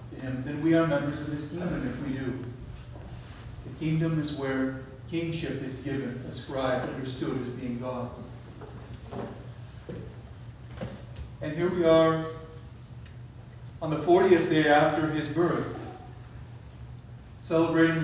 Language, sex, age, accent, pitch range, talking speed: English, male, 40-59, American, 120-160 Hz, 120 wpm